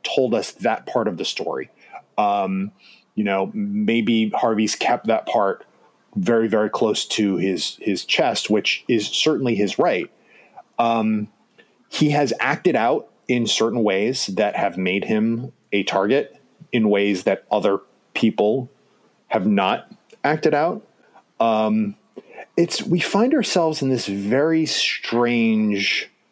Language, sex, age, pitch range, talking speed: English, male, 30-49, 100-145 Hz, 135 wpm